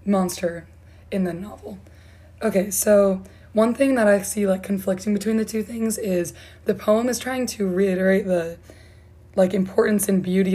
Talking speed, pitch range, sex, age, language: 165 wpm, 175-200 Hz, female, 20-39, English